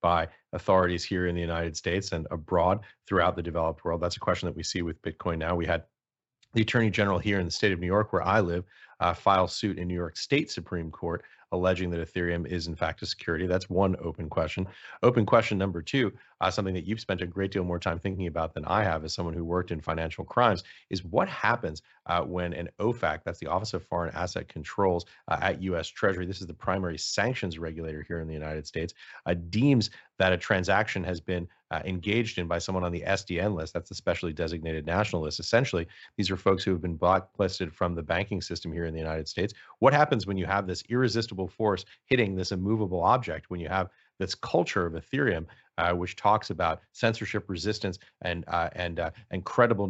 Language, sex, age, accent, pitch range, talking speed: English, male, 30-49, American, 85-100 Hz, 220 wpm